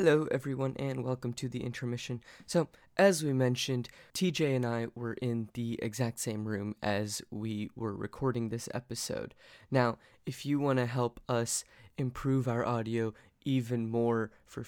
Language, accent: English, American